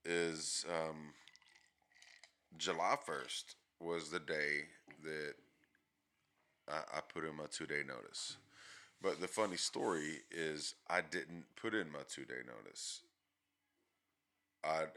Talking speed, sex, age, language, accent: 110 wpm, male, 30-49, English, American